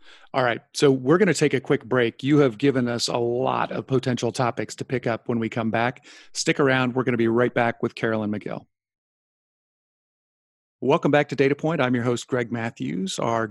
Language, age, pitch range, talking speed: English, 40-59, 120-140 Hz, 210 wpm